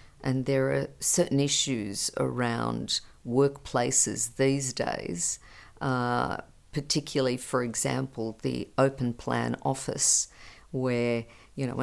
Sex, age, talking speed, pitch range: female, 50-69, 100 wpm, 120-140 Hz